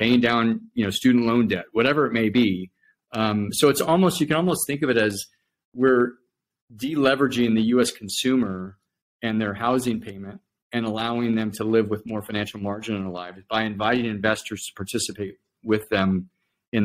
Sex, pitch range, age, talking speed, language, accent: male, 100-125 Hz, 40-59, 180 wpm, English, American